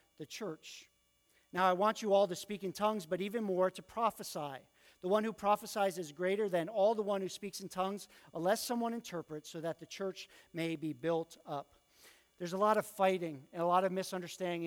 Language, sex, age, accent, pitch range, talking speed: English, male, 50-69, American, 165-200 Hz, 210 wpm